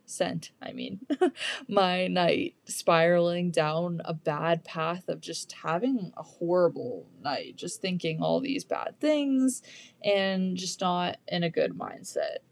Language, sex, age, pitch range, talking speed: English, female, 20-39, 175-220 Hz, 135 wpm